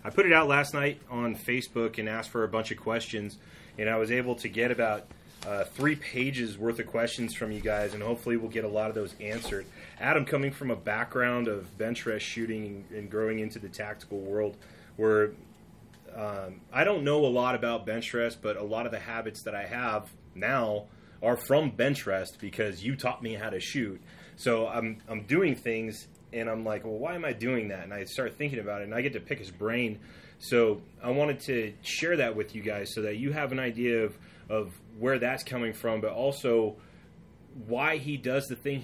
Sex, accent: male, American